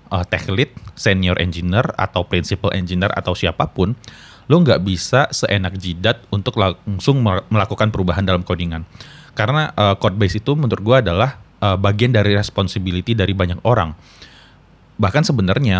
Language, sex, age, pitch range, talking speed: Indonesian, male, 30-49, 90-115 Hz, 140 wpm